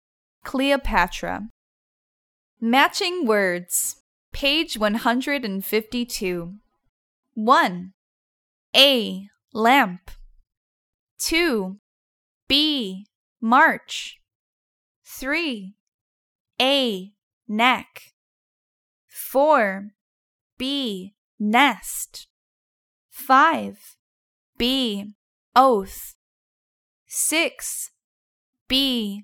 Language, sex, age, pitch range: Thai, female, 10-29, 195-275 Hz